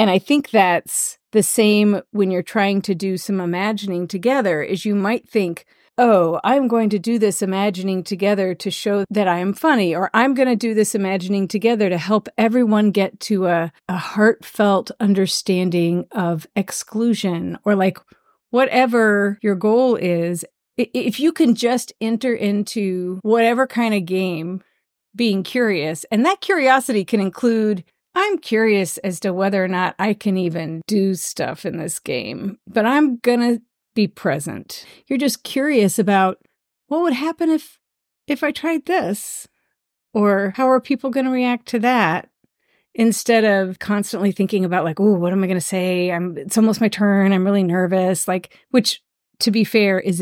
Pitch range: 190-235 Hz